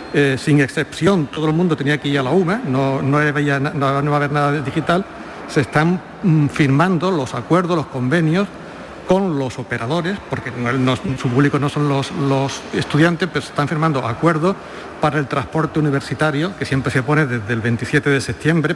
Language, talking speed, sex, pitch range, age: Spanish, 200 wpm, male, 135-170 Hz, 60-79